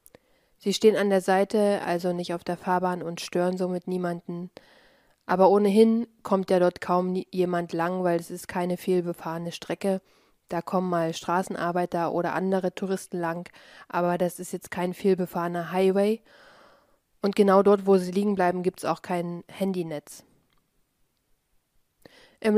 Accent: German